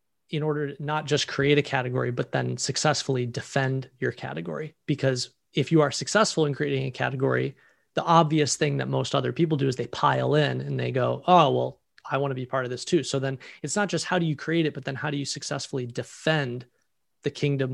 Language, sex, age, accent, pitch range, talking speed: English, male, 30-49, American, 125-145 Hz, 225 wpm